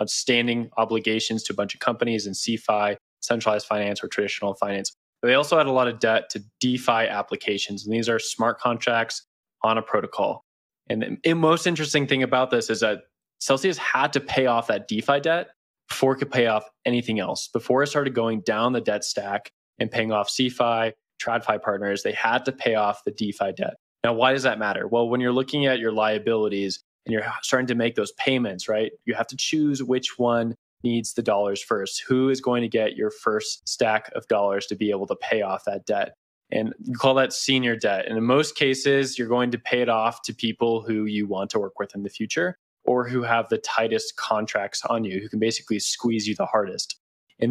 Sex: male